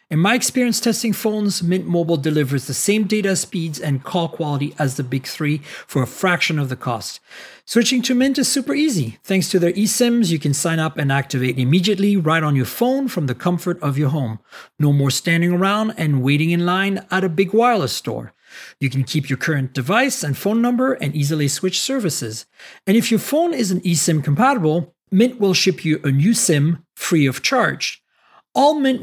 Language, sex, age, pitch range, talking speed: English, male, 40-59, 145-205 Hz, 205 wpm